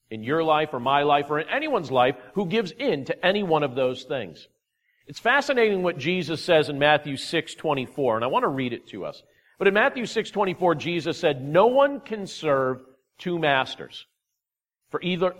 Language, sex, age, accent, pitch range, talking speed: English, male, 50-69, American, 140-185 Hz, 190 wpm